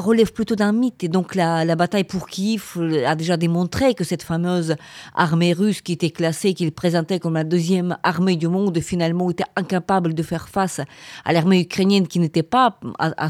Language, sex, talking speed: French, female, 195 wpm